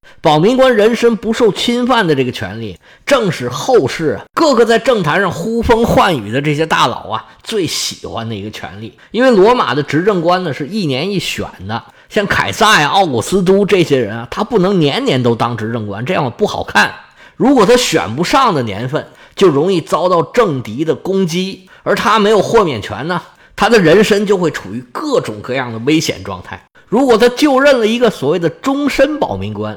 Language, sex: Chinese, male